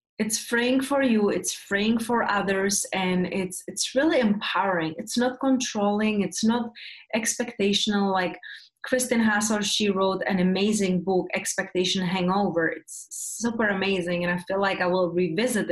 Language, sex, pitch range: English, female, 185-235 Hz